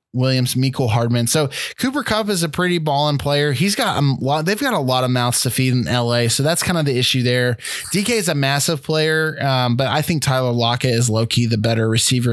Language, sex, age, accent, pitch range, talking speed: English, male, 20-39, American, 120-155 Hz, 235 wpm